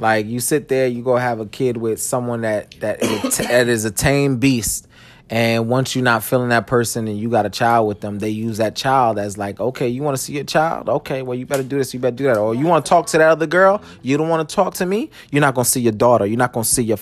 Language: English